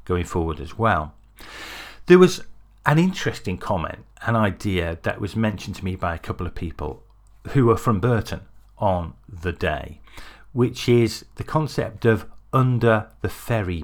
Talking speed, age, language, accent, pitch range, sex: 155 wpm, 50-69, English, British, 90-115 Hz, male